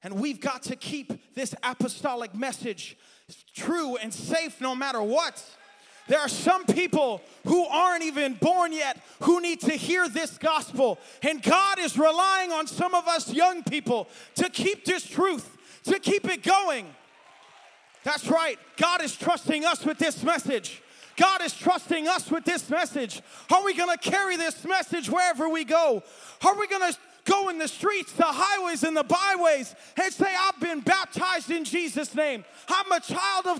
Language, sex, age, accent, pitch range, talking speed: English, male, 20-39, American, 260-360 Hz, 175 wpm